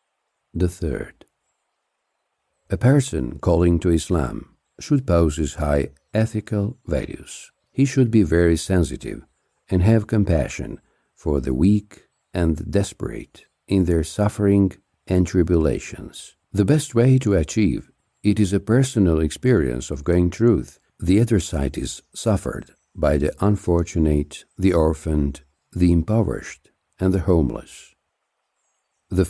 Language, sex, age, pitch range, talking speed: English, male, 60-79, 80-100 Hz, 125 wpm